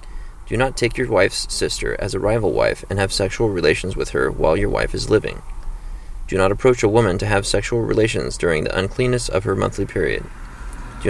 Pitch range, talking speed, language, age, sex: 95-115 Hz, 205 wpm, English, 30-49, male